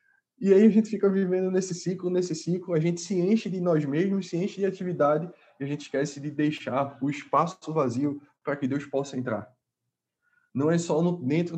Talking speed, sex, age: 205 wpm, male, 20-39